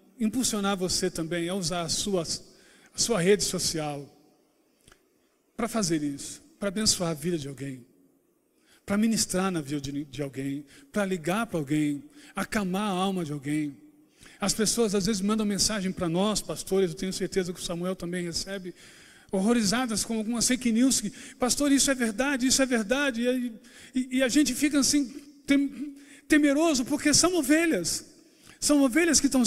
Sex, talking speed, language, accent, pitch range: male, 160 wpm, Portuguese, Brazilian, 185-260 Hz